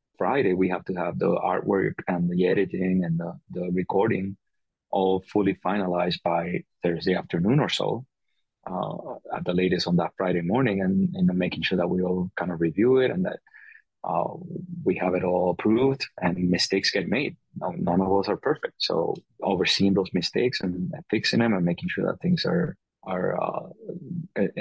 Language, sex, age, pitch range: English, male, 30-49, 90-115 Hz